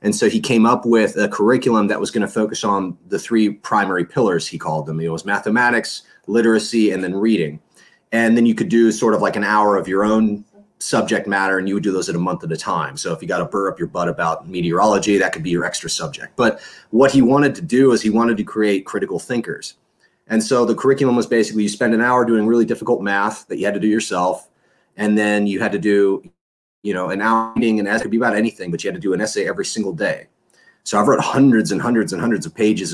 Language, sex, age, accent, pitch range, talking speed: English, male, 30-49, American, 95-115 Hz, 260 wpm